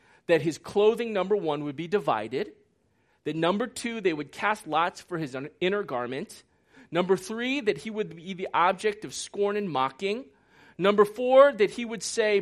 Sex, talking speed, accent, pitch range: male, 180 wpm, American, 175-225 Hz